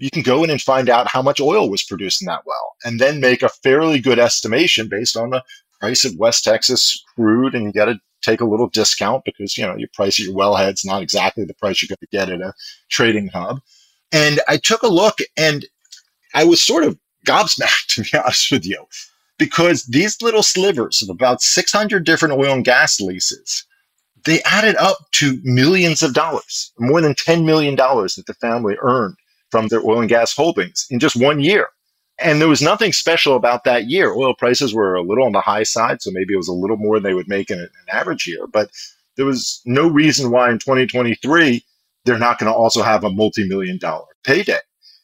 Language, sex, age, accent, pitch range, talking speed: English, male, 40-59, American, 110-155 Hz, 210 wpm